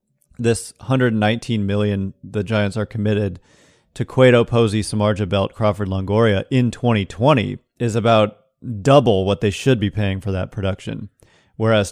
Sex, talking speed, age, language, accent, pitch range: male, 140 wpm, 30-49, English, American, 100-120 Hz